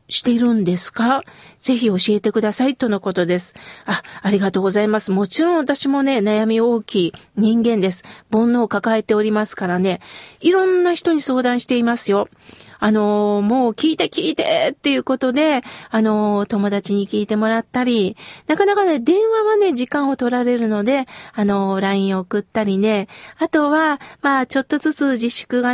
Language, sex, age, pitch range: Japanese, female, 40-59, 205-275 Hz